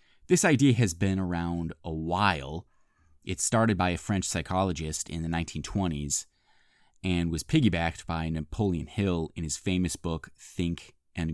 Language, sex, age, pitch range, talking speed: English, male, 30-49, 85-120 Hz, 150 wpm